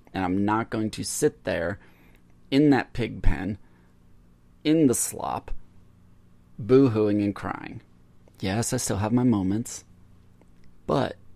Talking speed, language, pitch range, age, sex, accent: 125 wpm, English, 90-105 Hz, 30-49, male, American